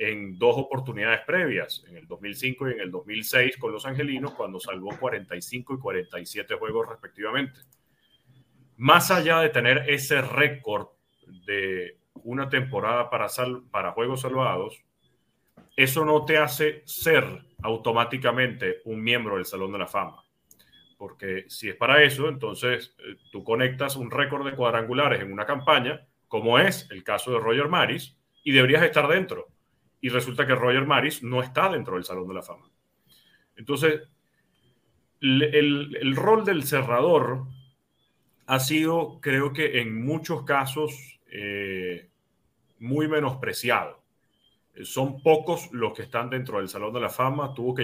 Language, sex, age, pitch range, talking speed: Spanish, male, 40-59, 120-150 Hz, 145 wpm